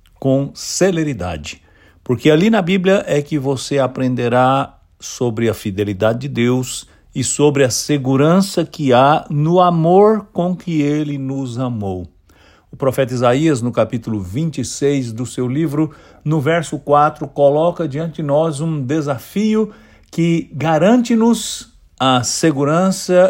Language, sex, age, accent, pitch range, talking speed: English, male, 60-79, Brazilian, 115-165 Hz, 130 wpm